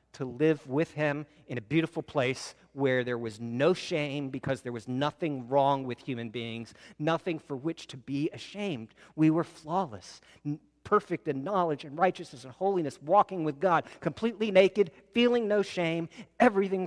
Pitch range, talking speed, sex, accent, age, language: 125-185 Hz, 165 wpm, male, American, 50-69, English